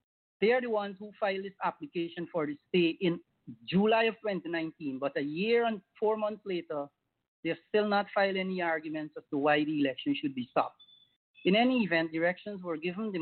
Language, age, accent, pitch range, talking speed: English, 30-49, Filipino, 150-195 Hz, 200 wpm